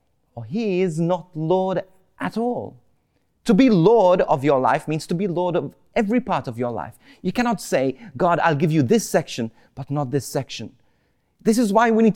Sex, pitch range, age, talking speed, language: male, 135-210 Hz, 30-49, 200 wpm, English